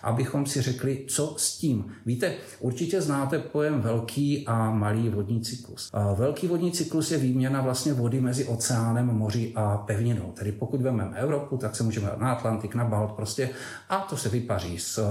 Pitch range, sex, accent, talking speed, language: 105-135 Hz, male, native, 175 wpm, Czech